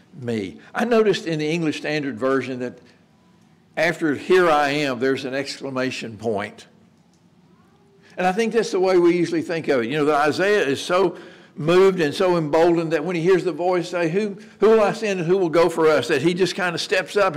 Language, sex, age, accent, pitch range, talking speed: English, male, 60-79, American, 135-185 Hz, 220 wpm